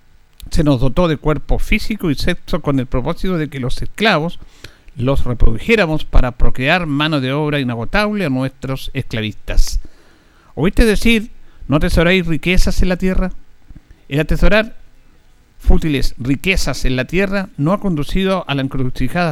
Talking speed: 145 wpm